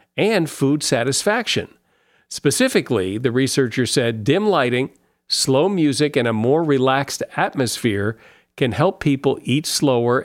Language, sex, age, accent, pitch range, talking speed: English, male, 50-69, American, 110-150 Hz, 125 wpm